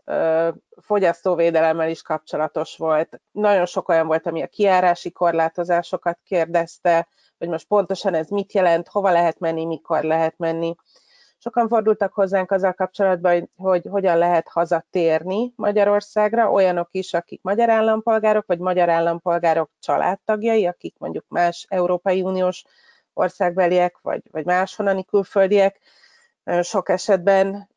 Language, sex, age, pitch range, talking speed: Hungarian, female, 30-49, 165-195 Hz, 120 wpm